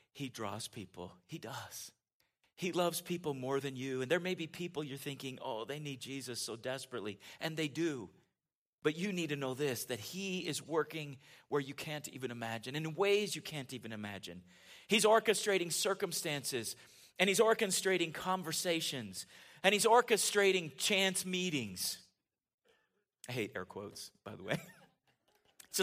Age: 40-59